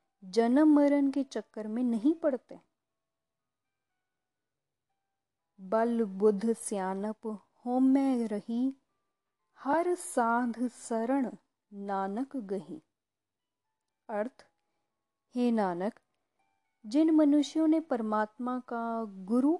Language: Hindi